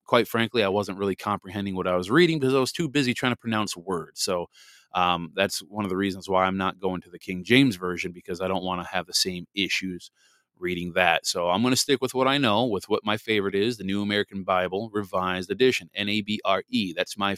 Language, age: English, 30-49